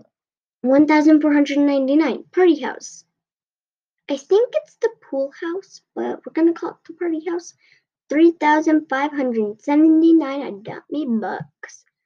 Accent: American